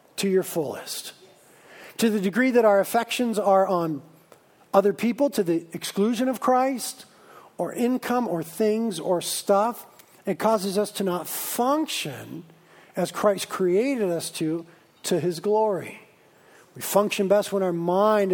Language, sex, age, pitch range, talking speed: English, male, 50-69, 185-240 Hz, 145 wpm